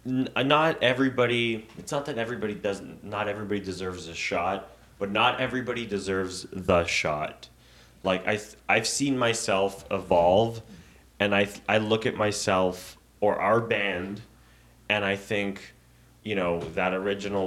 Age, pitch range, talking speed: 20-39, 95-115 Hz, 145 wpm